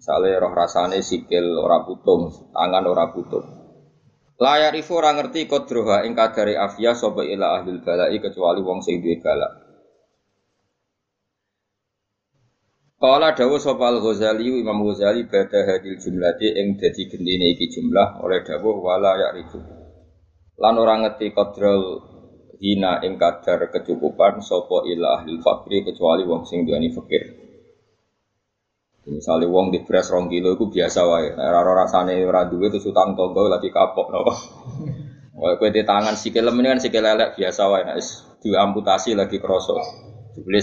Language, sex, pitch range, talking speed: Indonesian, male, 95-125 Hz, 145 wpm